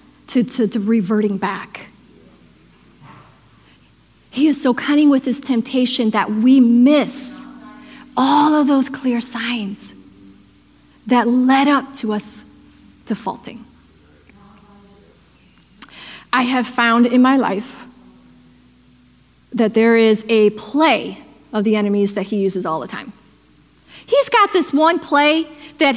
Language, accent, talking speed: English, American, 120 wpm